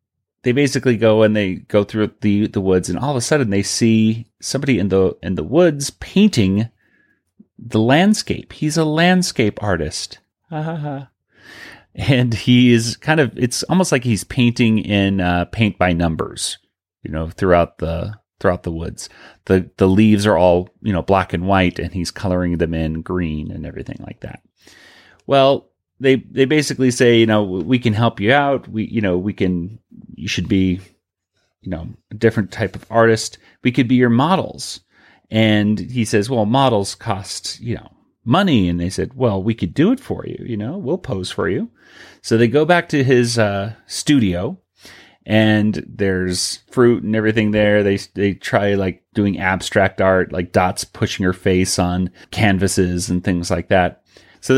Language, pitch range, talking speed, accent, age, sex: English, 95-125 Hz, 180 wpm, American, 30-49, male